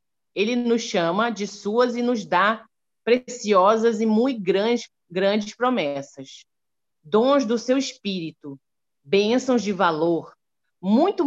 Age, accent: 40-59, Brazilian